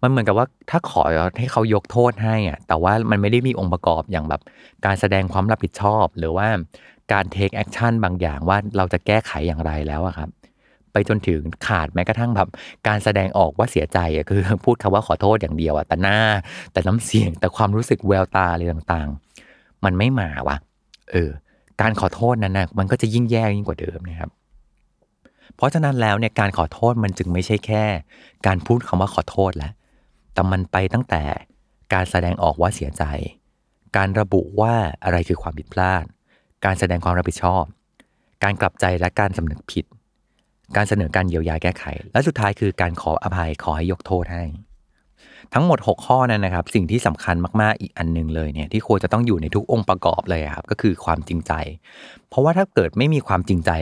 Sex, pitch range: male, 85-105 Hz